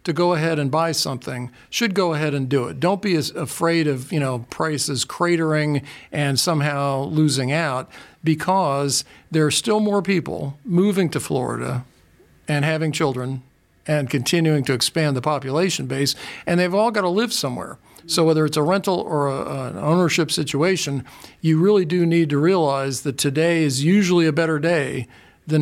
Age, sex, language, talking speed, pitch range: 50-69, male, English, 175 wpm, 135-170 Hz